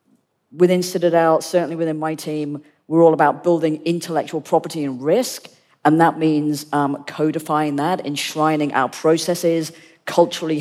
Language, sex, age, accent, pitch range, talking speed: English, female, 40-59, British, 140-160 Hz, 135 wpm